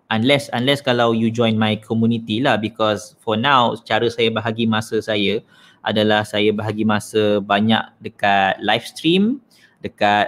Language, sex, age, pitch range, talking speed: Malay, male, 20-39, 110-145 Hz, 145 wpm